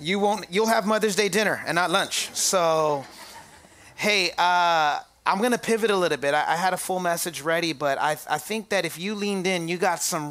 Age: 30-49